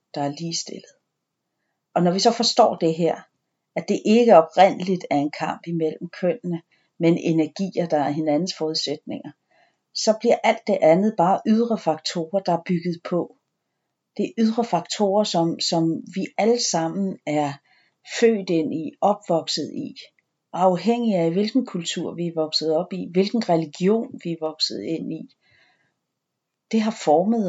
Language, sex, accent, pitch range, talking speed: Danish, female, native, 160-195 Hz, 155 wpm